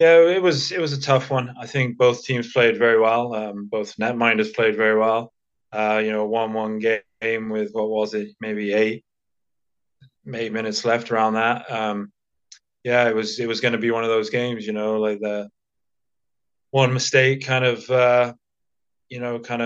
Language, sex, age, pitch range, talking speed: English, male, 20-39, 105-120 Hz, 195 wpm